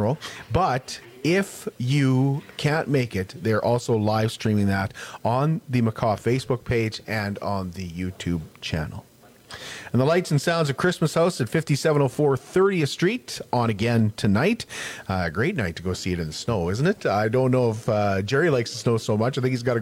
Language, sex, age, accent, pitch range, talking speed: English, male, 40-59, American, 110-150 Hz, 195 wpm